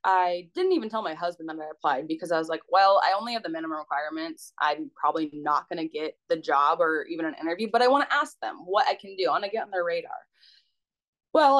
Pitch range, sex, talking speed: 160-240 Hz, female, 255 wpm